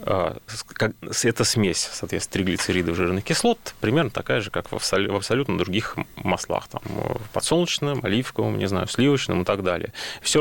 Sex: male